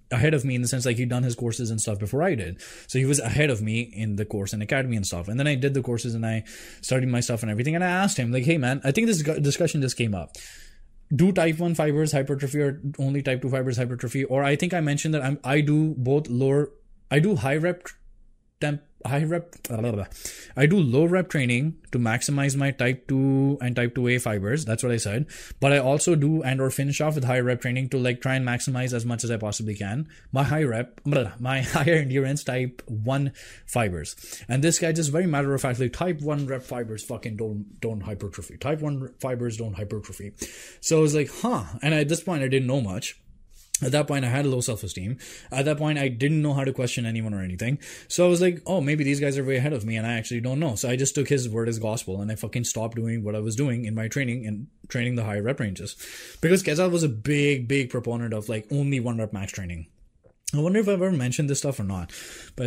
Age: 20-39